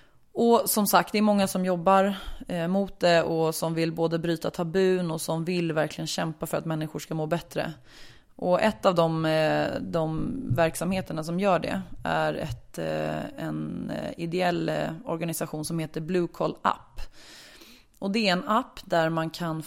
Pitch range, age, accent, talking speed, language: 160-190 Hz, 20-39, Swedish, 165 wpm, English